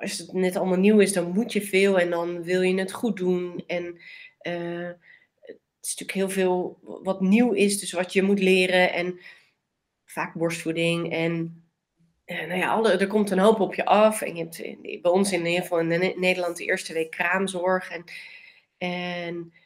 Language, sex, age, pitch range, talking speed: Dutch, female, 30-49, 180-225 Hz, 190 wpm